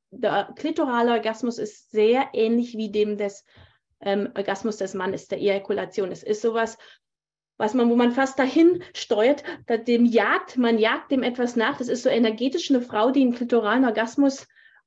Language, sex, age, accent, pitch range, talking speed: German, female, 30-49, German, 215-260 Hz, 170 wpm